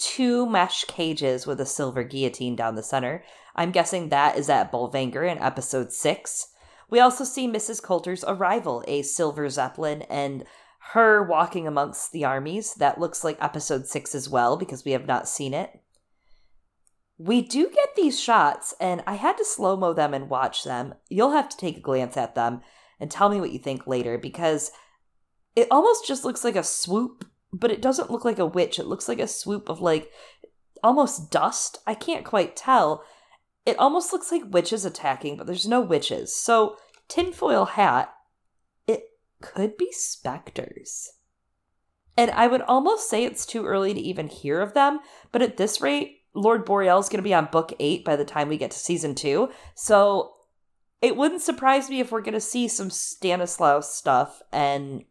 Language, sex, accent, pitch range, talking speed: English, female, American, 145-240 Hz, 185 wpm